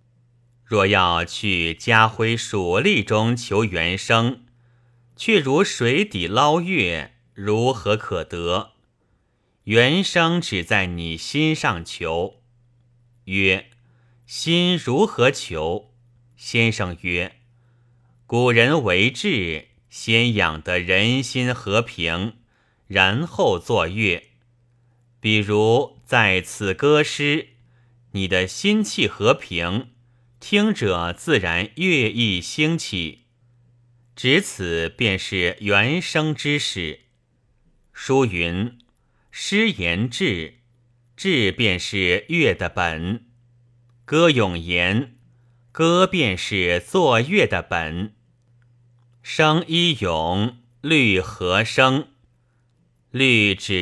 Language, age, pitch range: Chinese, 30-49, 100-125 Hz